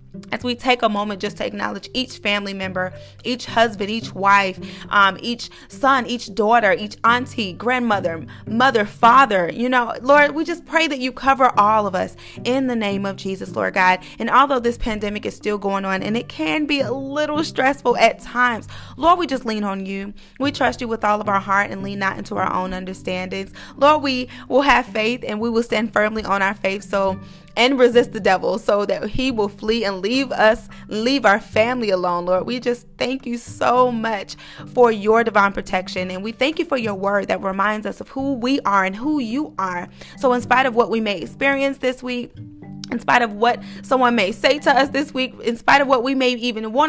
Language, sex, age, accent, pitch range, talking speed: English, female, 30-49, American, 200-255 Hz, 220 wpm